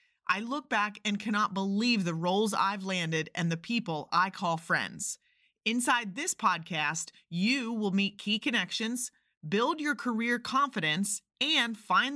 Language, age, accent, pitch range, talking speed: English, 30-49, American, 200-250 Hz, 150 wpm